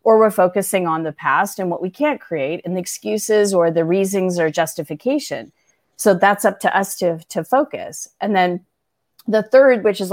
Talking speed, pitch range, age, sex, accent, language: 195 wpm, 170-215 Hz, 30-49, female, American, English